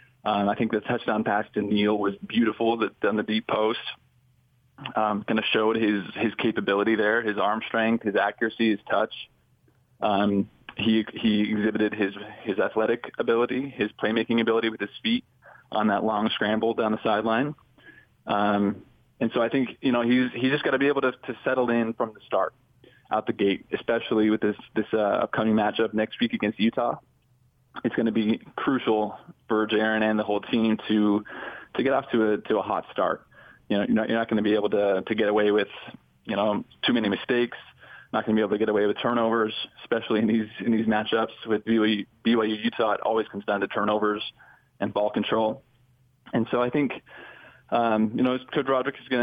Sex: male